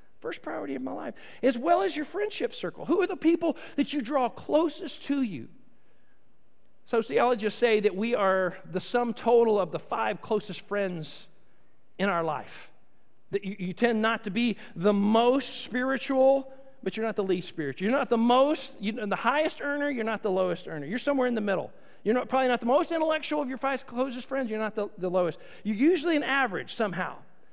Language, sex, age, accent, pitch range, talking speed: English, male, 50-69, American, 210-275 Hz, 205 wpm